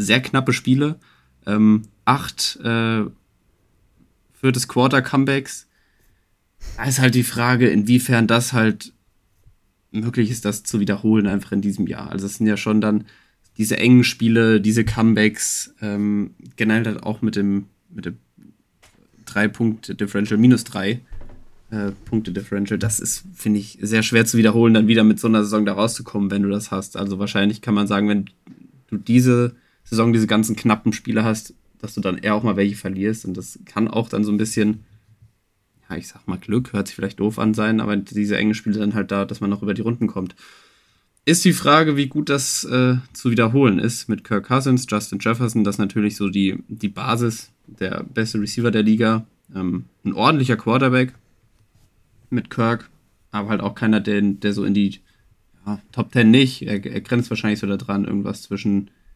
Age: 20-39